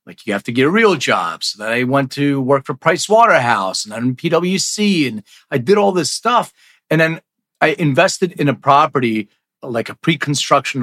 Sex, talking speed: male, 200 wpm